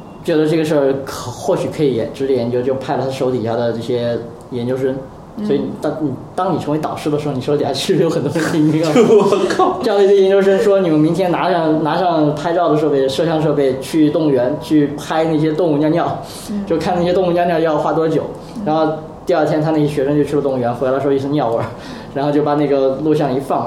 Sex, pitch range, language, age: male, 130-160 Hz, Chinese, 20-39